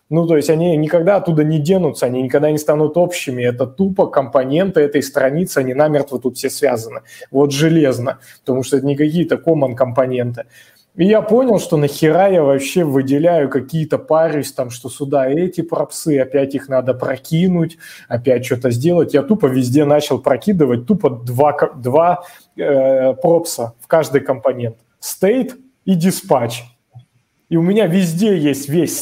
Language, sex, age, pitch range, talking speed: Russian, male, 20-39, 135-180 Hz, 155 wpm